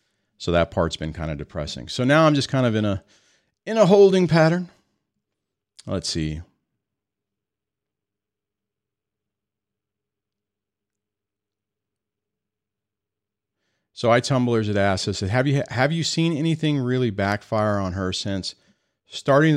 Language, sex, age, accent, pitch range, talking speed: English, male, 40-59, American, 105-145 Hz, 120 wpm